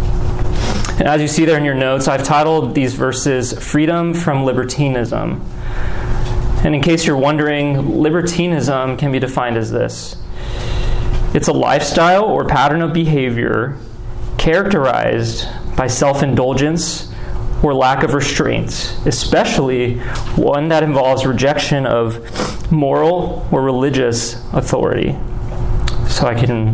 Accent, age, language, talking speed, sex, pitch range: American, 30-49, English, 115 wpm, male, 120-150 Hz